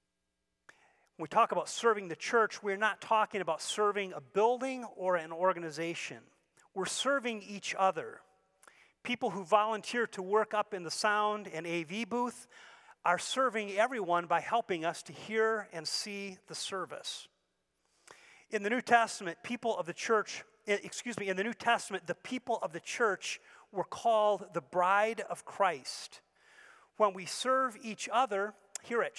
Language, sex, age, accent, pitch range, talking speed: English, male, 40-59, American, 170-220 Hz, 160 wpm